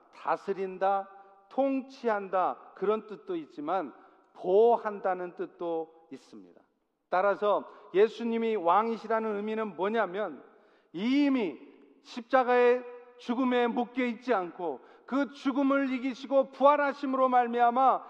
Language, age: Korean, 50-69